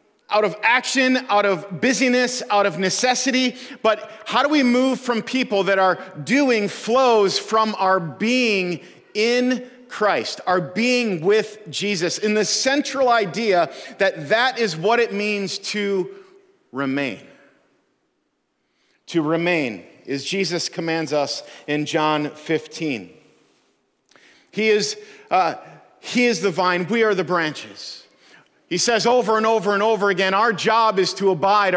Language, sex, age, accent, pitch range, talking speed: English, male, 40-59, American, 185-235 Hz, 140 wpm